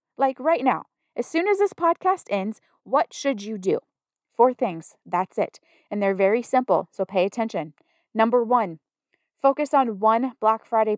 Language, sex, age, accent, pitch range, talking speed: English, female, 30-49, American, 215-300 Hz, 170 wpm